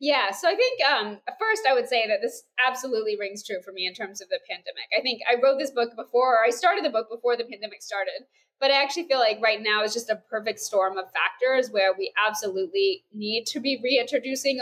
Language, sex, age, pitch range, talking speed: English, female, 20-39, 215-285 Hz, 235 wpm